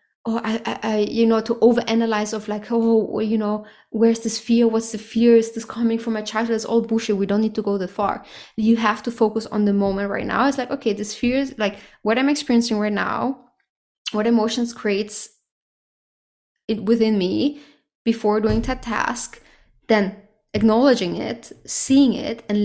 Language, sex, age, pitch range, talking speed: English, female, 20-39, 205-230 Hz, 195 wpm